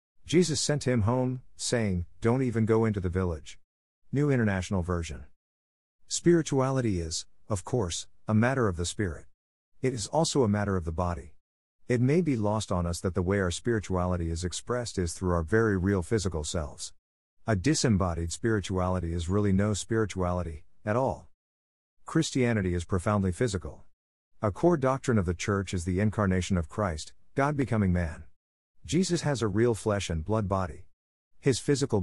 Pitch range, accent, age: 85-115 Hz, American, 50-69